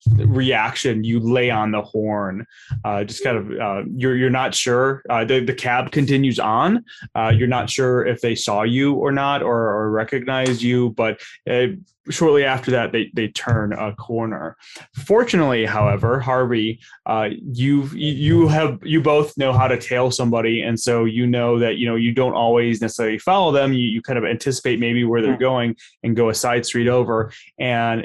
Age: 20-39